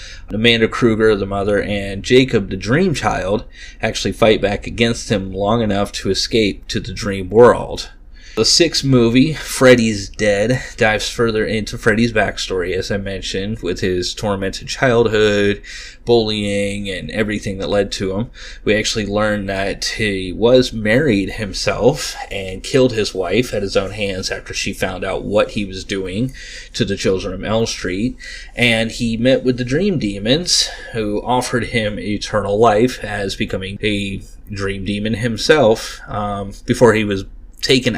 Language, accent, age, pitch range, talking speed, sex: English, American, 30-49, 100-120 Hz, 155 wpm, male